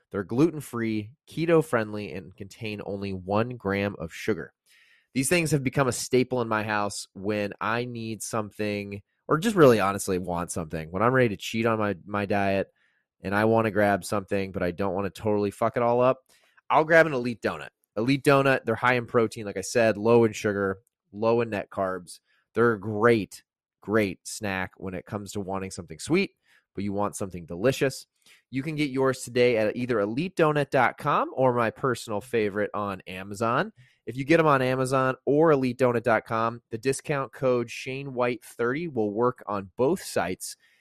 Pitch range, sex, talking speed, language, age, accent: 100-130 Hz, male, 180 wpm, English, 20-39, American